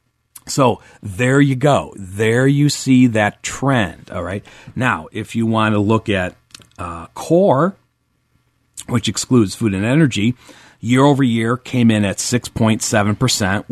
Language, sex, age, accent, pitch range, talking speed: English, male, 40-59, American, 100-130 Hz, 130 wpm